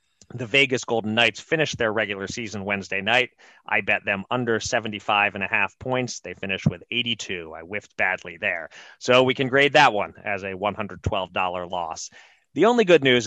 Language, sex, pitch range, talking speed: English, male, 100-120 Hz, 185 wpm